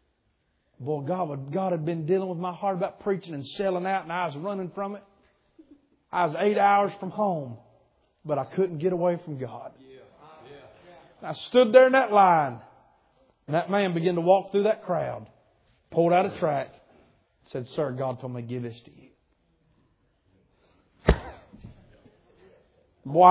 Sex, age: male, 40-59